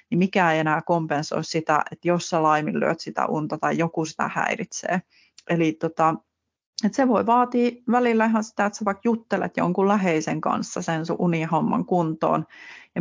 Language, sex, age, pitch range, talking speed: Finnish, female, 30-49, 160-200 Hz, 165 wpm